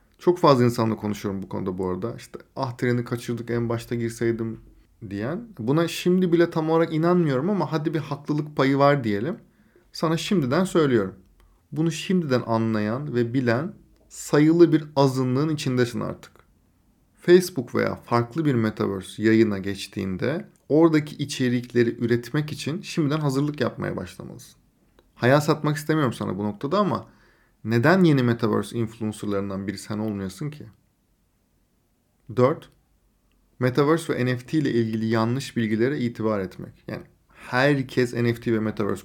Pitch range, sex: 110-145 Hz, male